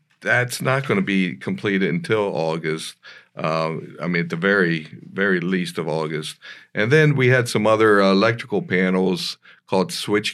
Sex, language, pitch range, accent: male, English, 90-115 Hz, American